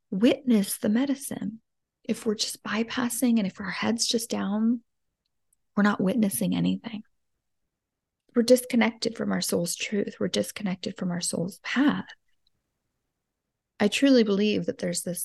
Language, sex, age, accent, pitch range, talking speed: English, female, 20-39, American, 185-235 Hz, 140 wpm